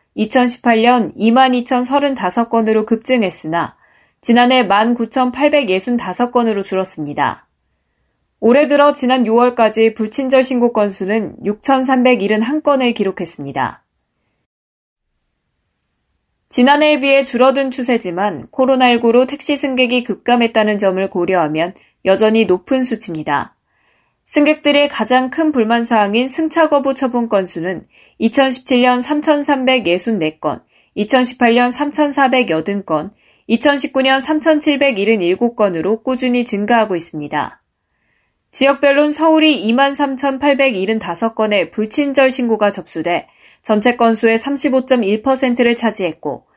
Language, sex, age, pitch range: Korean, female, 20-39, 200-265 Hz